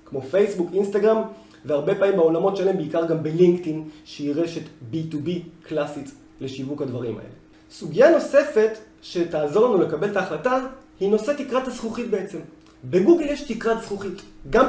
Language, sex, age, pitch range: Hebrew, male, 30-49, 165-230 Hz